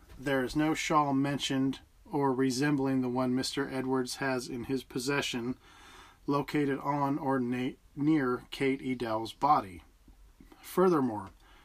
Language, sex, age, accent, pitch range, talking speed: English, male, 40-59, American, 125-140 Hz, 125 wpm